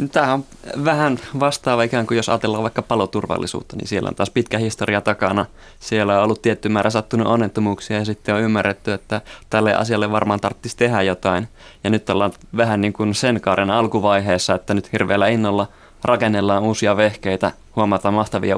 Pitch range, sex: 95-110 Hz, male